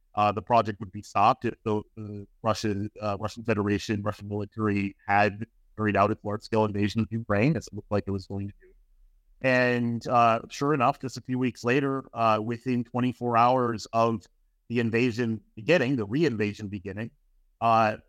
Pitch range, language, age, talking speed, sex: 105-125 Hz, English, 30-49, 180 wpm, male